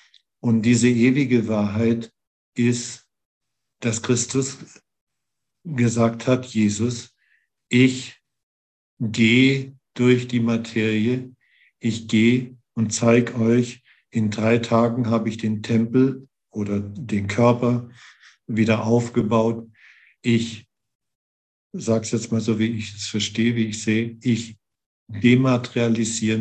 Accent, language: German, German